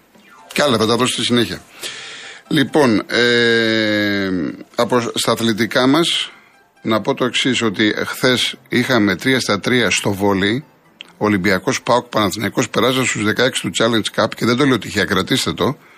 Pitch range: 105-130 Hz